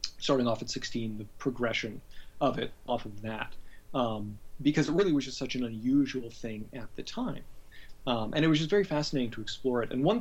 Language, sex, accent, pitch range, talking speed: English, male, American, 115-140 Hz, 210 wpm